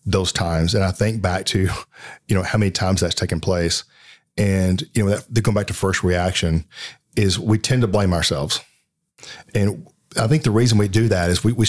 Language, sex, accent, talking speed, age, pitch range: English, male, American, 205 wpm, 40-59, 90-115 Hz